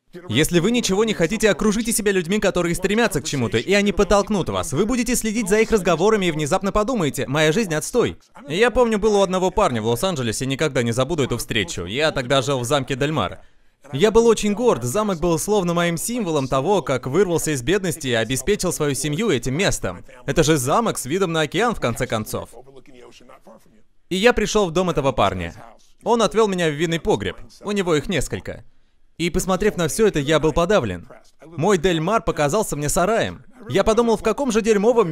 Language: Russian